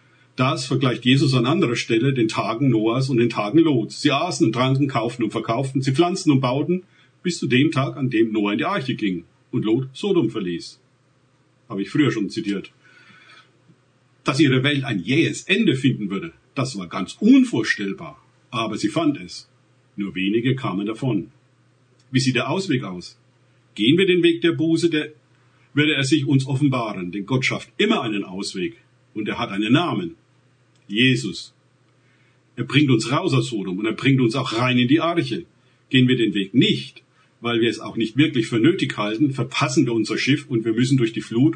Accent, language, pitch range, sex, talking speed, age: German, German, 115-145 Hz, male, 190 wpm, 50-69